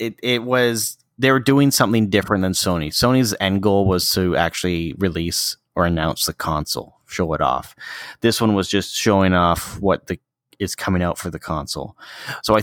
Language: English